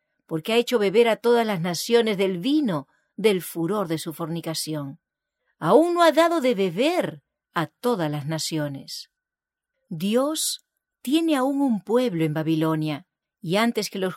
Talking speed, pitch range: 155 wpm, 165-255 Hz